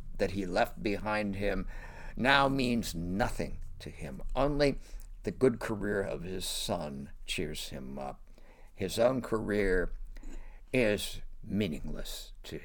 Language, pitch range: English, 90-125 Hz